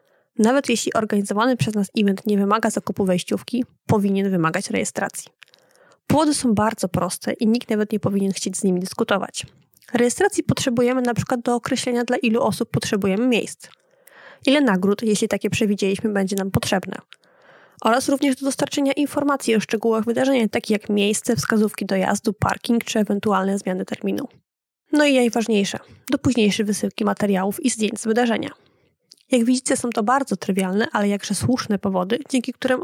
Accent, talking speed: native, 155 wpm